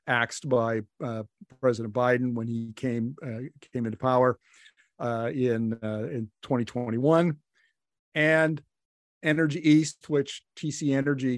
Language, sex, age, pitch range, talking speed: English, male, 50-69, 115-145 Hz, 120 wpm